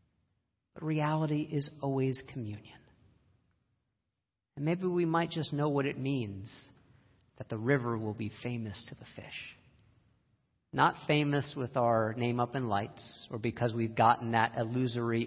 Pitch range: 110-140 Hz